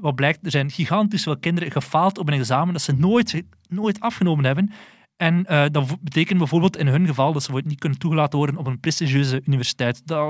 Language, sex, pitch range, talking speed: Dutch, male, 140-170 Hz, 210 wpm